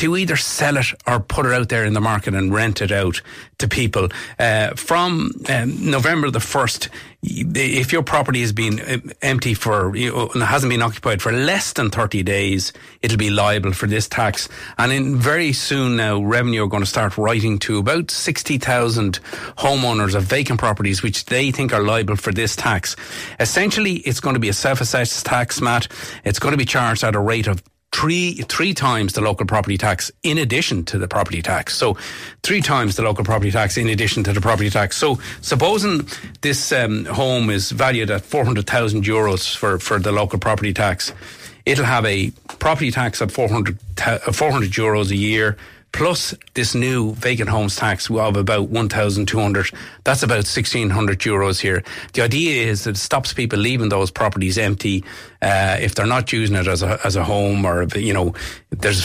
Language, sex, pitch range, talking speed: English, male, 100-125 Hz, 185 wpm